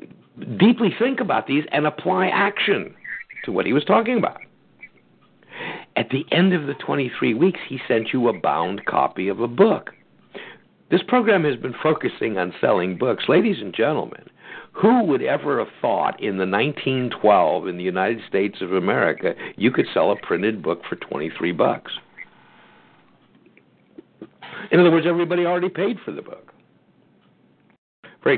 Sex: male